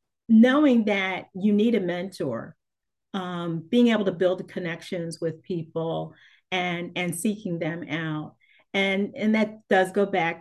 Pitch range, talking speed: 185-225 Hz, 150 wpm